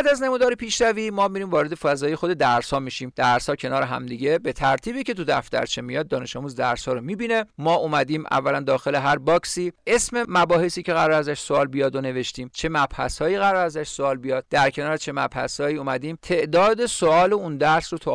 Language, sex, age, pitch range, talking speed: Persian, male, 50-69, 140-200 Hz, 190 wpm